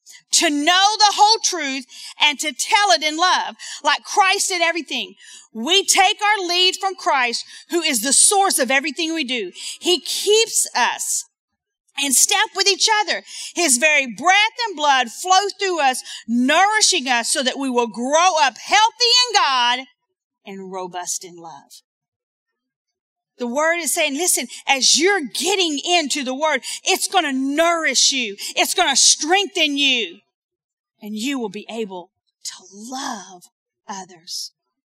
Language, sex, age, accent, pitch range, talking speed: English, female, 40-59, American, 235-360 Hz, 155 wpm